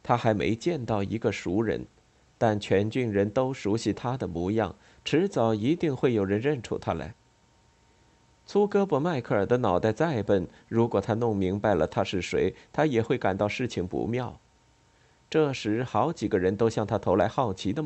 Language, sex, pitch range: Chinese, male, 100-125 Hz